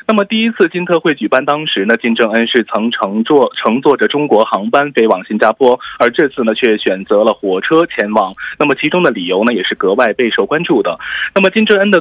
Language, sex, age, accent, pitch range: Korean, male, 20-39, Chinese, 120-185 Hz